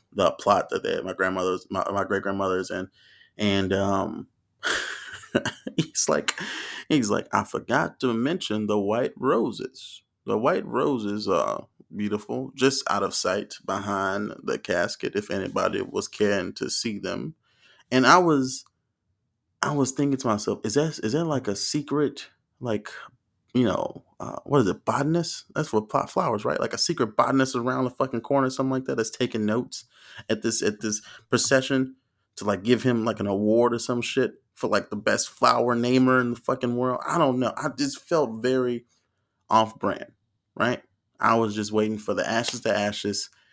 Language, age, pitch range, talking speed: English, 20-39, 105-130 Hz, 175 wpm